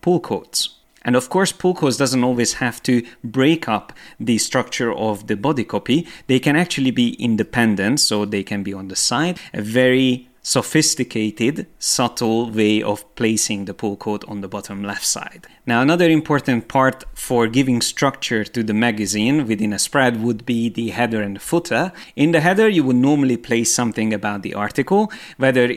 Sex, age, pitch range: male, 30-49, 110-140 Hz